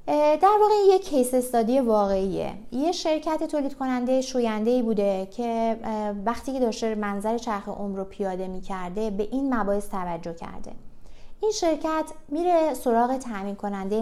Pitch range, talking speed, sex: 205-260 Hz, 145 wpm, female